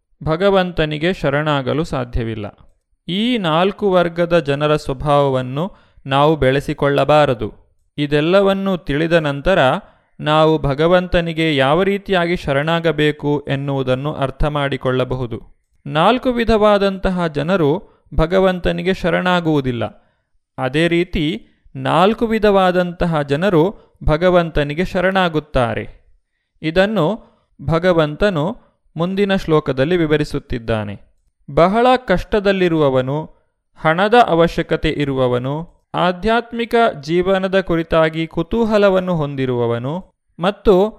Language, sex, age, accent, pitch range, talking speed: Kannada, male, 30-49, native, 140-185 Hz, 70 wpm